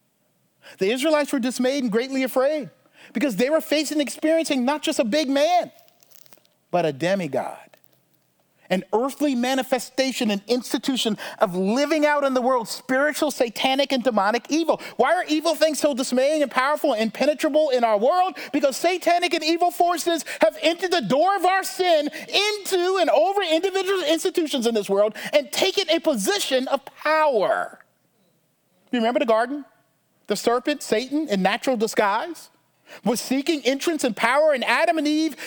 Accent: American